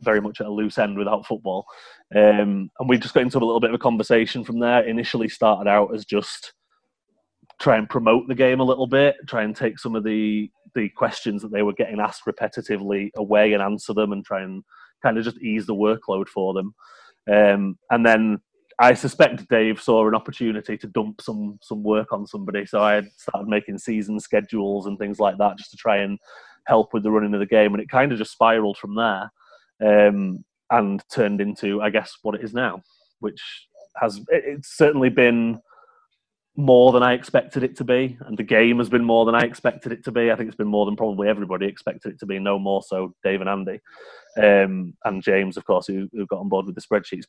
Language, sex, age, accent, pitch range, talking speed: English, male, 30-49, British, 100-120 Hz, 220 wpm